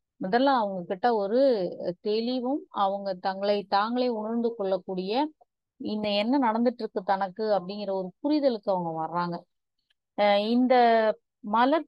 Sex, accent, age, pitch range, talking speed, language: female, native, 30-49, 190-230 Hz, 105 wpm, Tamil